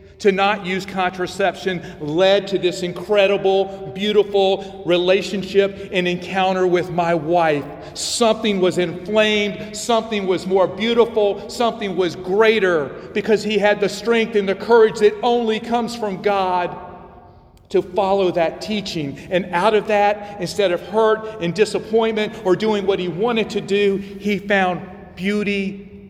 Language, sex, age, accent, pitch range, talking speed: English, male, 40-59, American, 175-210 Hz, 140 wpm